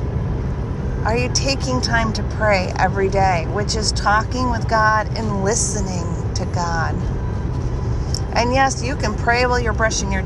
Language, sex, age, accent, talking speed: English, female, 40-59, American, 150 wpm